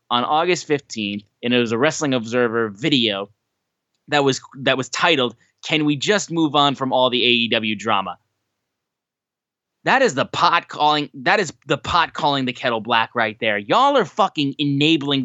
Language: English